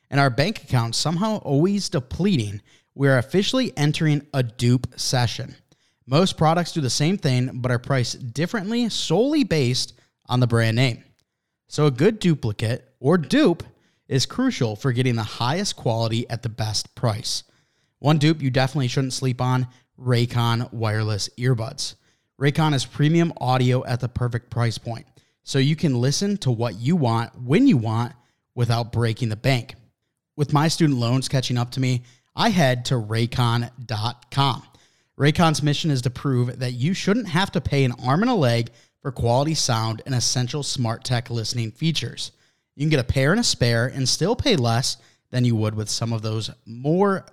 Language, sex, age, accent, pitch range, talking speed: English, male, 20-39, American, 120-150 Hz, 175 wpm